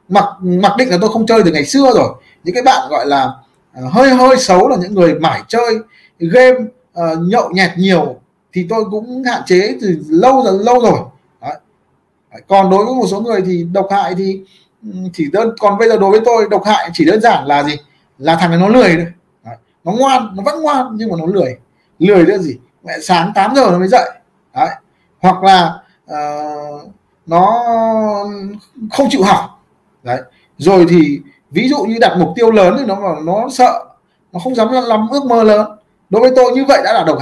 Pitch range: 175-230 Hz